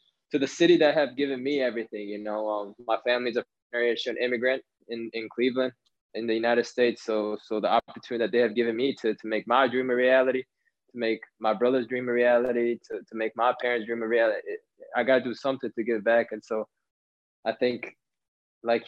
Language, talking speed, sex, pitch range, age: English, 210 wpm, male, 115-125 Hz, 20-39